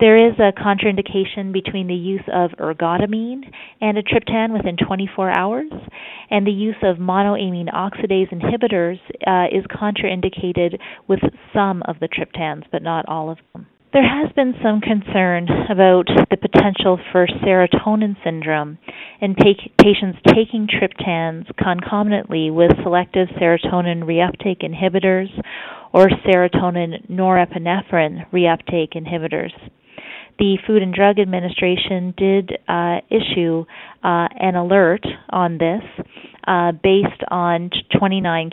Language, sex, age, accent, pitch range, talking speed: English, female, 40-59, American, 175-205 Hz, 120 wpm